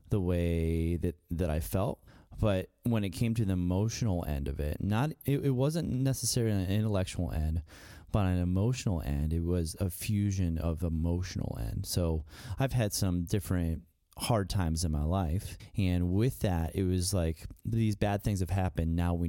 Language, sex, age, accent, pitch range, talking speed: English, male, 30-49, American, 85-105 Hz, 180 wpm